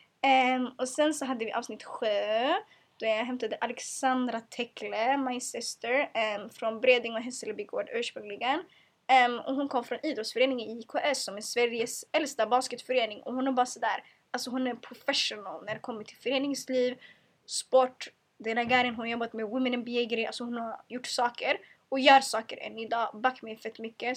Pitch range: 230-270 Hz